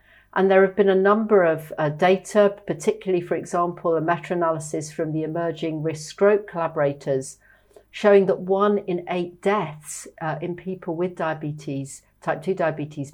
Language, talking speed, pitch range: English, 155 wpm, 155-200 Hz